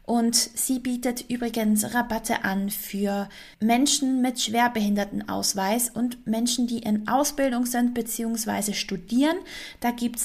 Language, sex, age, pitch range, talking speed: German, female, 20-39, 200-240 Hz, 115 wpm